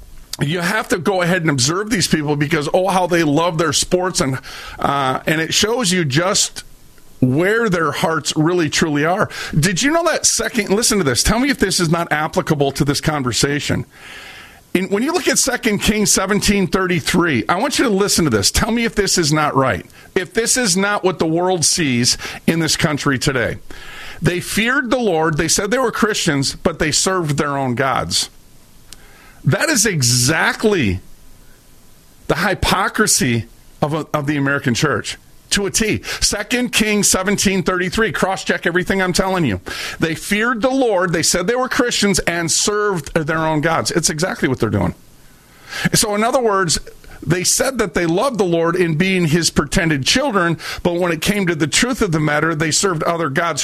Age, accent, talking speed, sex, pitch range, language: 50-69, American, 190 wpm, male, 155-205 Hz, English